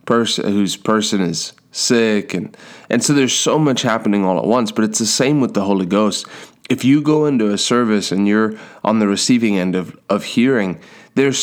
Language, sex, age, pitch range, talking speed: English, male, 30-49, 95-110 Hz, 200 wpm